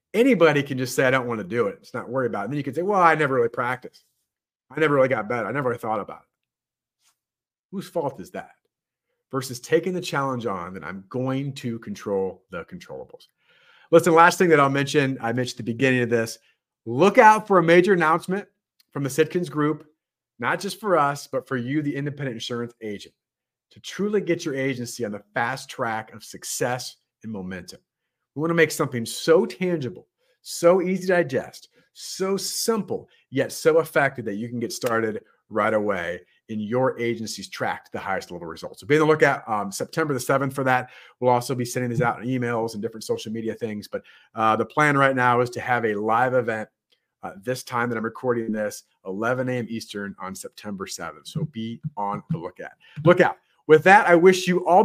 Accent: American